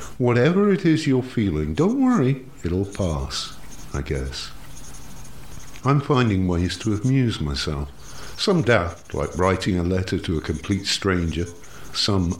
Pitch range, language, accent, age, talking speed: 75-110 Hz, English, British, 50-69, 135 wpm